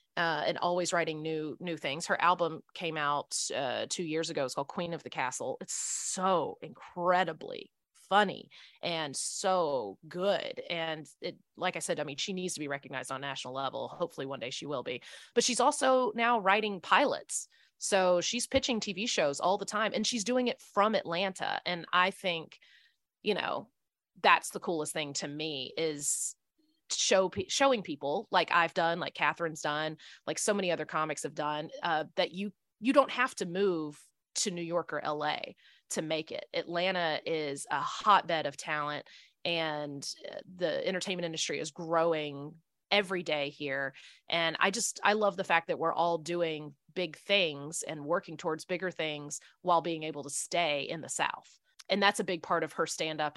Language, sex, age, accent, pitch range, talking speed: English, female, 30-49, American, 150-190 Hz, 185 wpm